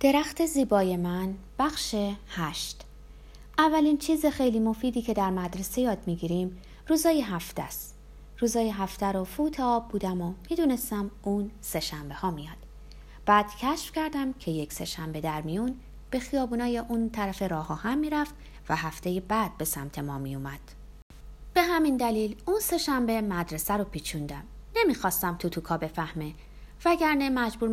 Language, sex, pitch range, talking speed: Persian, female, 170-270 Hz, 140 wpm